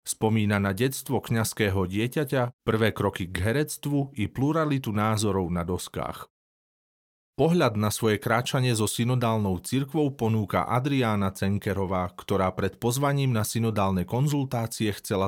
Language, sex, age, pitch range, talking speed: Slovak, male, 30-49, 100-125 Hz, 120 wpm